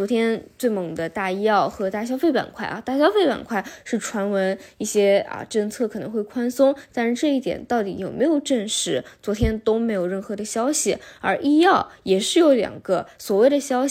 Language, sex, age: Chinese, female, 10-29